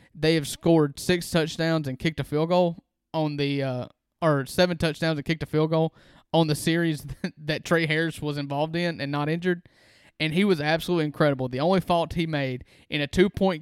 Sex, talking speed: male, 210 wpm